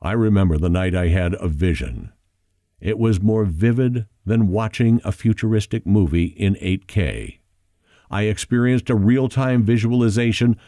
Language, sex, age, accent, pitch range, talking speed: English, male, 50-69, American, 90-120 Hz, 135 wpm